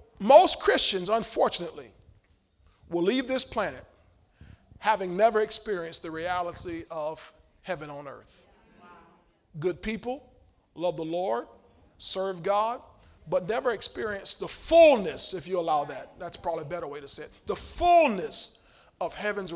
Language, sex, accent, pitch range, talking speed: English, male, American, 170-225 Hz, 135 wpm